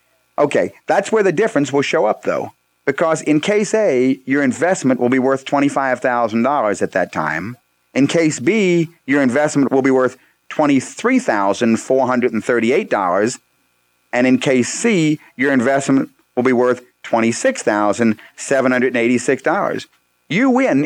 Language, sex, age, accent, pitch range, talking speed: English, male, 40-59, American, 115-170 Hz, 125 wpm